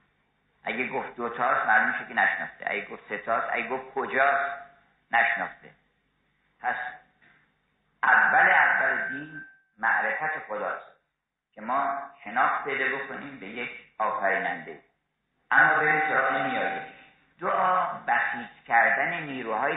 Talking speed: 105 wpm